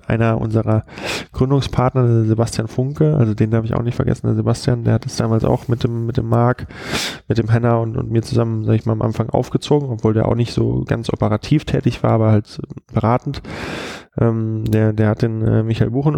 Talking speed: 215 wpm